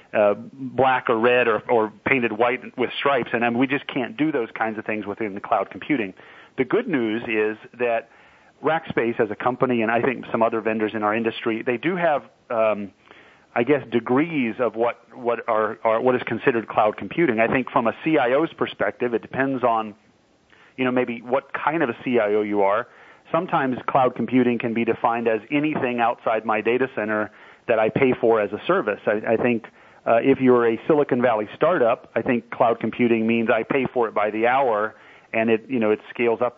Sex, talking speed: male, 210 wpm